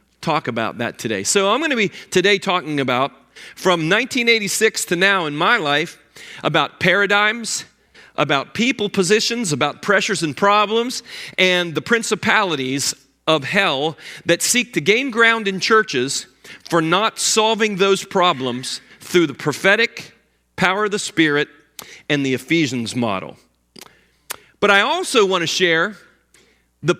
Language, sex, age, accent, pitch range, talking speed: English, male, 40-59, American, 140-200 Hz, 140 wpm